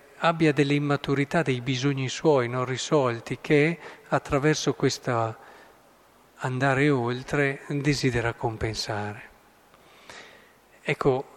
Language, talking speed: Italian, 85 wpm